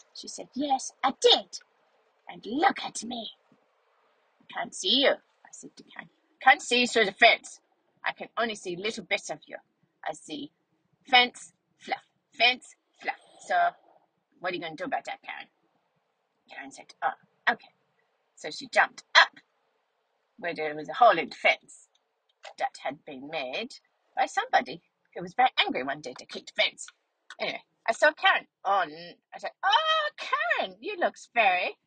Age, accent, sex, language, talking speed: 30-49, British, female, English, 175 wpm